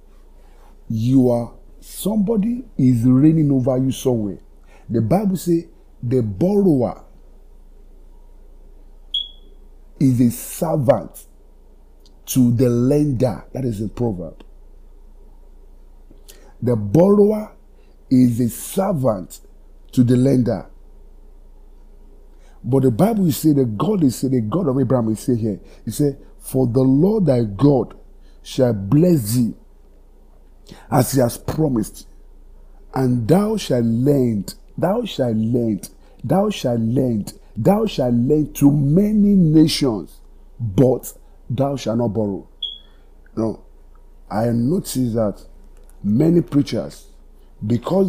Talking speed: 110 wpm